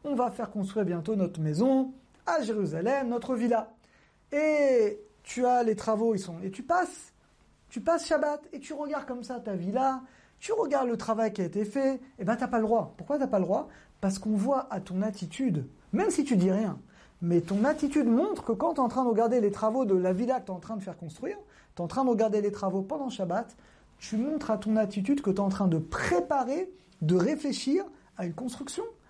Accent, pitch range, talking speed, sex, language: French, 195-265 Hz, 235 wpm, male, French